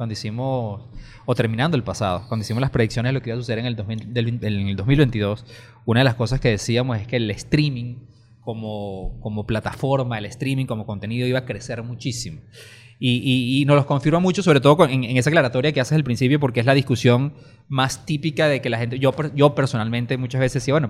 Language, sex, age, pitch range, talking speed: Spanish, male, 20-39, 120-135 Hz, 225 wpm